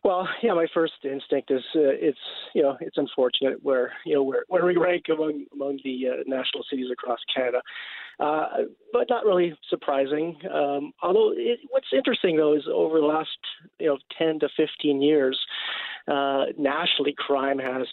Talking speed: 175 wpm